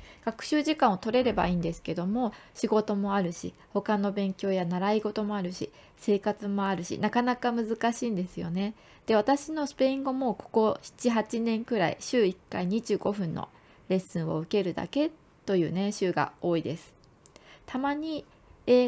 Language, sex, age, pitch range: Japanese, female, 20-39, 190-255 Hz